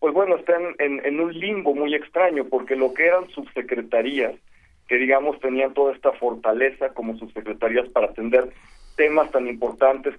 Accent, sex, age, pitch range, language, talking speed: Mexican, male, 40-59, 120-140 Hz, Spanish, 160 wpm